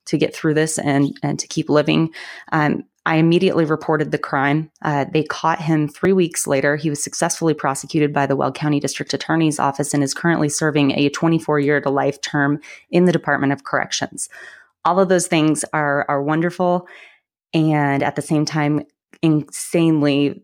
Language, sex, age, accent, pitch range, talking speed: English, female, 20-39, American, 145-165 Hz, 170 wpm